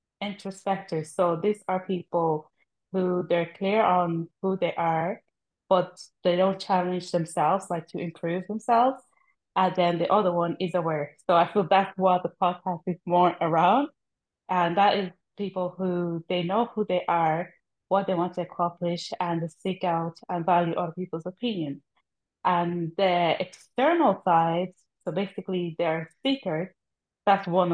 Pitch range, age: 170-195 Hz, 20-39